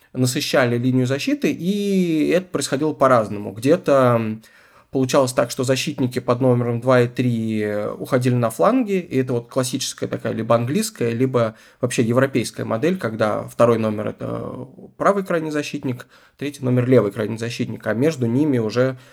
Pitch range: 115-140 Hz